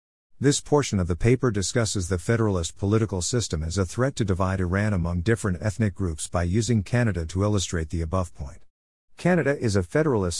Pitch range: 90-120 Hz